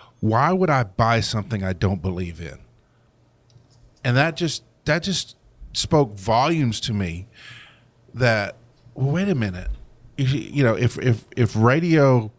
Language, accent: English, American